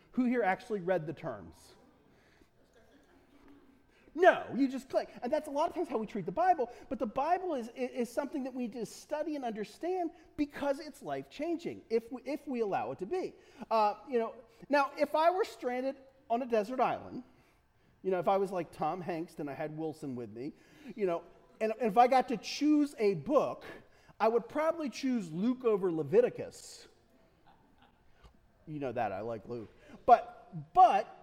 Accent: American